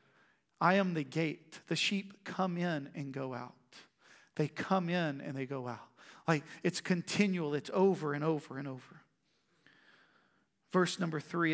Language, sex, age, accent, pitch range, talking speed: English, male, 40-59, American, 145-175 Hz, 155 wpm